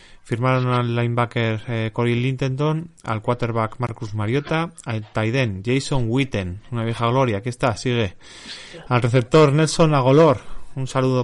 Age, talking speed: 30-49, 140 wpm